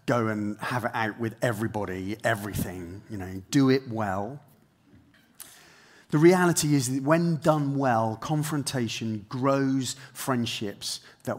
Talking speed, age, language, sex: 125 wpm, 30-49, English, male